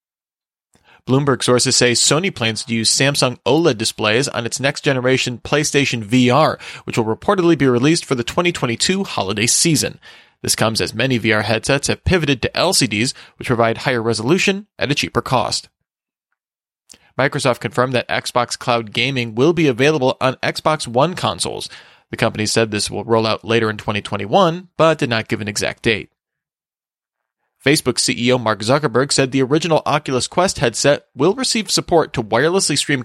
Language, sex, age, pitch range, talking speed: English, male, 30-49, 115-150 Hz, 160 wpm